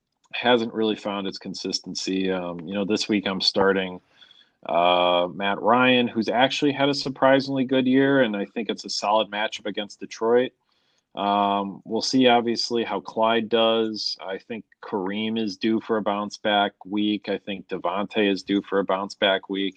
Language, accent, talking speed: English, American, 175 wpm